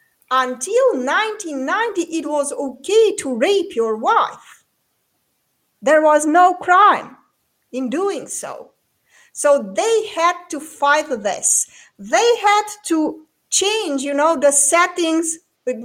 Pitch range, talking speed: 240-350 Hz, 115 wpm